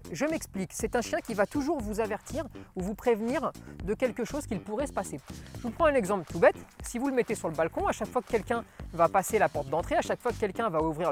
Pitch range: 205-260 Hz